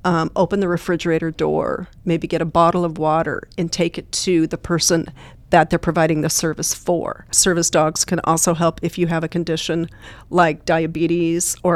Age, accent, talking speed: 40-59, American, 185 wpm